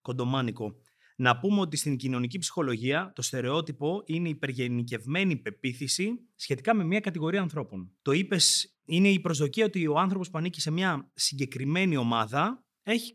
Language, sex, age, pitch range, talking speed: Greek, male, 30-49, 125-185 Hz, 150 wpm